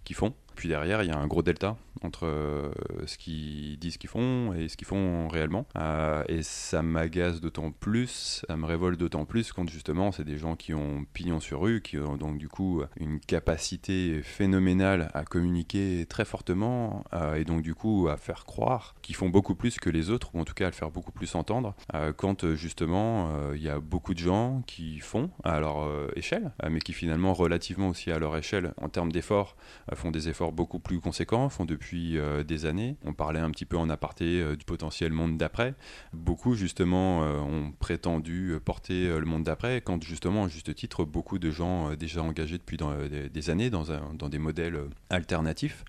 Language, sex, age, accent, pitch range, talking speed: French, male, 20-39, French, 80-95 Hz, 215 wpm